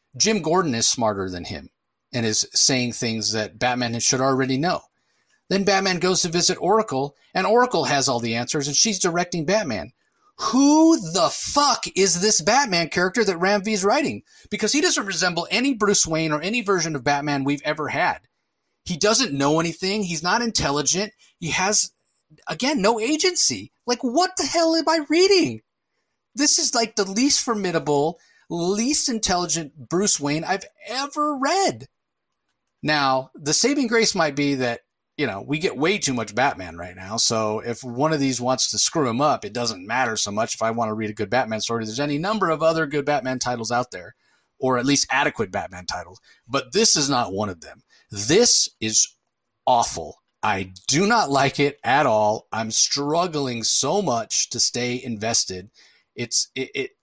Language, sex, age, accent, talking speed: English, male, 30-49, American, 185 wpm